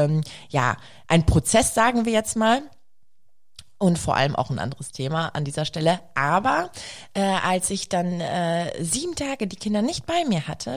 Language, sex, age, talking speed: German, female, 20-39, 175 wpm